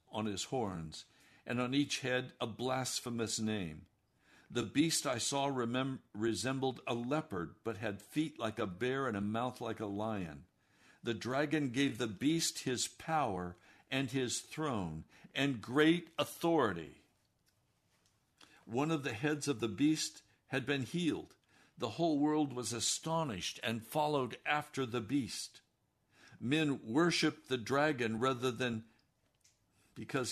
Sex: male